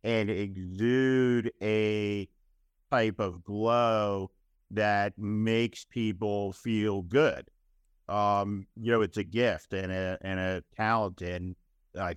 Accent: American